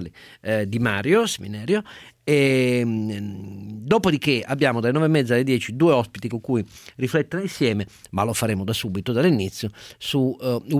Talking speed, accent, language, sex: 135 wpm, native, Italian, male